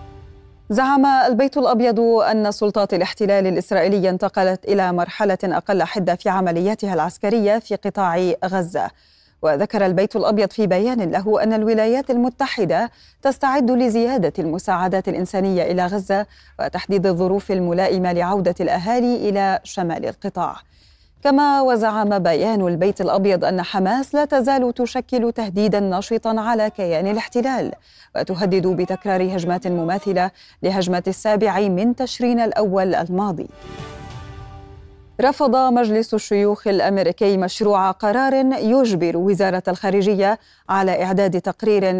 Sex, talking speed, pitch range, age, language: female, 110 wpm, 180-225 Hz, 30-49, Arabic